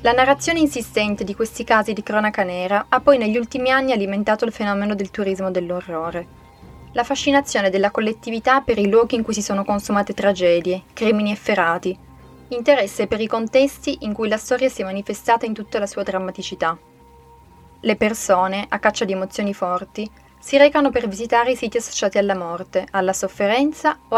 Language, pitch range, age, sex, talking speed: Italian, 185-230 Hz, 20-39, female, 175 wpm